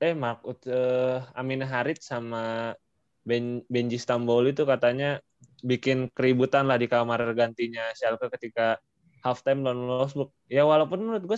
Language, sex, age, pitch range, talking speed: Indonesian, male, 20-39, 120-145 Hz, 135 wpm